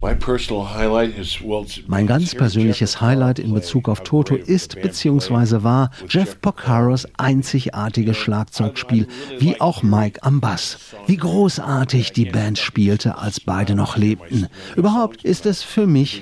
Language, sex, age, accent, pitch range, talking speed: German, male, 50-69, German, 110-155 Hz, 125 wpm